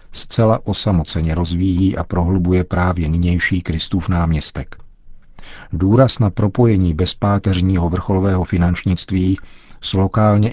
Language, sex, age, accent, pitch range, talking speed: Czech, male, 50-69, native, 90-100 Hz, 95 wpm